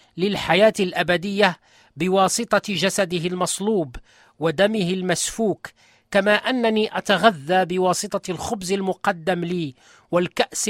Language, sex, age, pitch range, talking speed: Arabic, male, 40-59, 160-200 Hz, 85 wpm